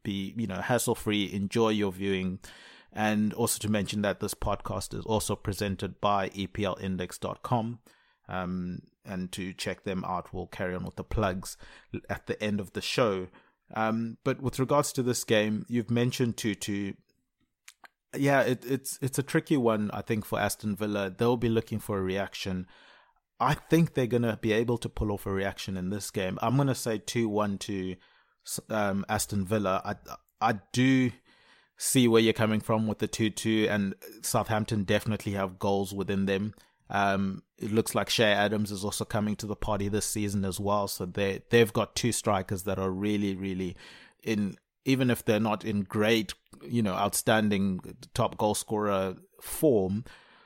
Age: 30-49